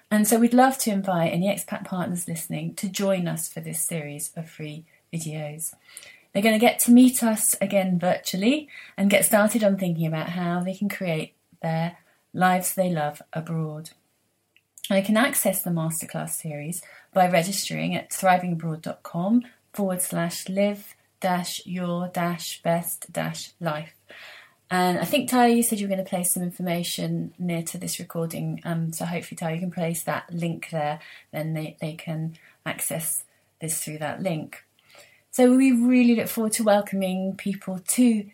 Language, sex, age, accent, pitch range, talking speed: English, female, 30-49, British, 165-205 Hz, 165 wpm